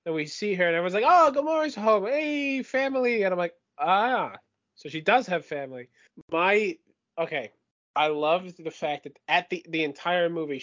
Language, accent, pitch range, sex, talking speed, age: English, American, 140-175 Hz, male, 185 wpm, 20-39